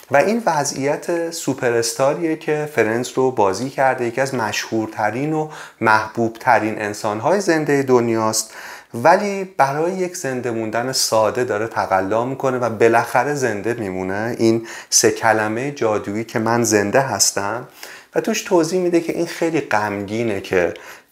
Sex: male